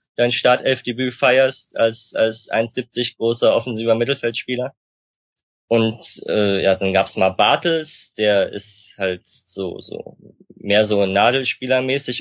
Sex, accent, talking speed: male, German, 115 wpm